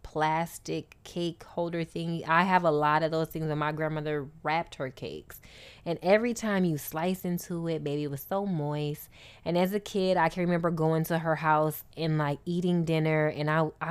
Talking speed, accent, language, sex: 200 wpm, American, English, female